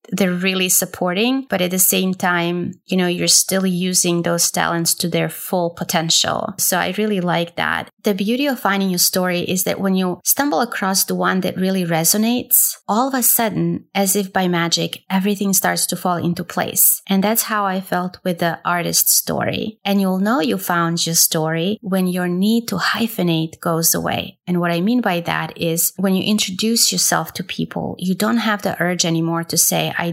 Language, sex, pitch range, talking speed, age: English, female, 175-205 Hz, 200 wpm, 20-39